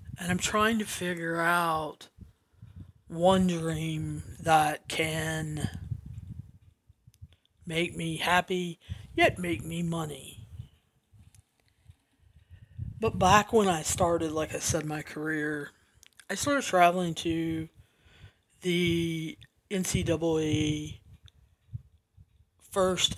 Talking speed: 90 wpm